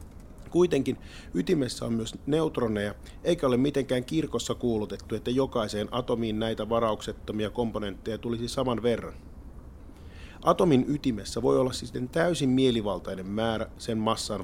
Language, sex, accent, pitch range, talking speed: Finnish, male, native, 95-130 Hz, 120 wpm